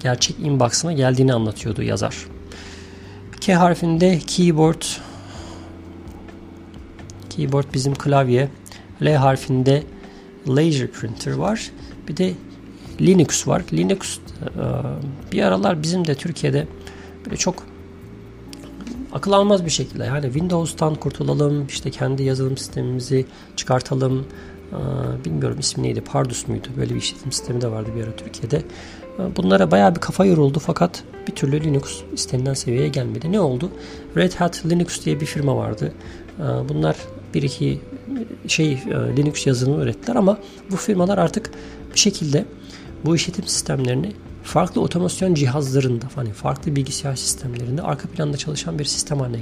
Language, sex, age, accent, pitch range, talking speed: Turkish, male, 50-69, native, 100-160 Hz, 125 wpm